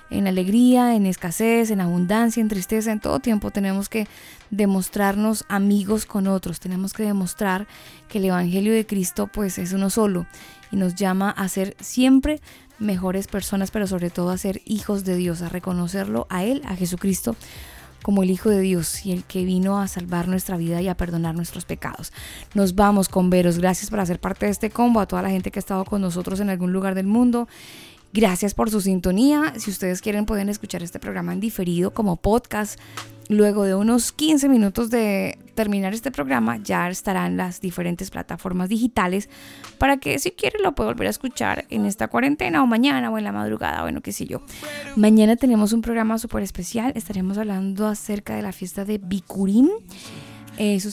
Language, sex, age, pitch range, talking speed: Spanish, female, 10-29, 185-220 Hz, 190 wpm